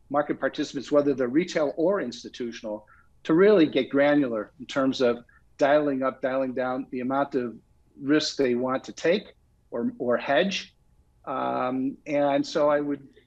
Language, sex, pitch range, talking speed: English, male, 125-145 Hz, 155 wpm